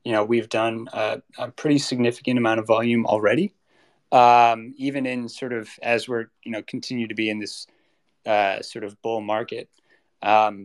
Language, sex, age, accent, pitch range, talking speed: English, male, 30-49, American, 120-150 Hz, 180 wpm